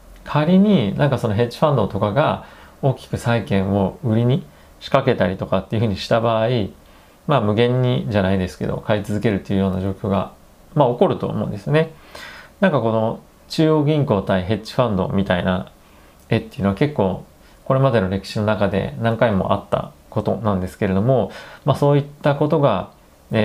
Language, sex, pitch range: Japanese, male, 95-125 Hz